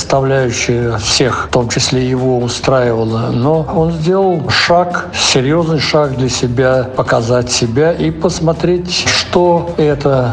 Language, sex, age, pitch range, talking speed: Russian, male, 60-79, 130-165 Hz, 115 wpm